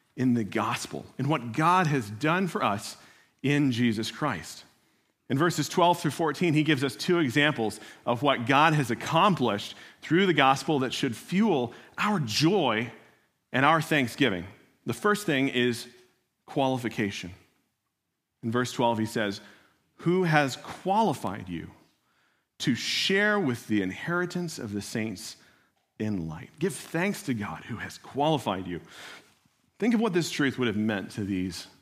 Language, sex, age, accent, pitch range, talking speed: English, male, 40-59, American, 115-160 Hz, 155 wpm